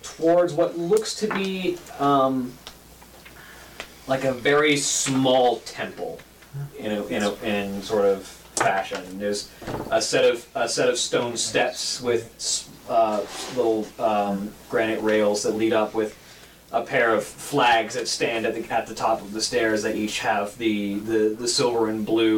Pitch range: 100-125 Hz